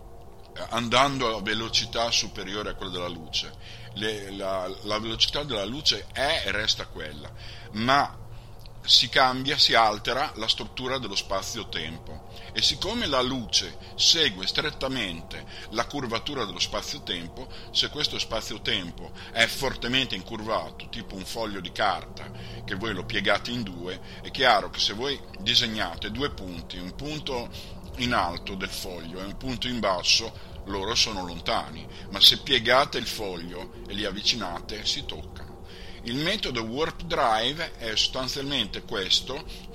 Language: Italian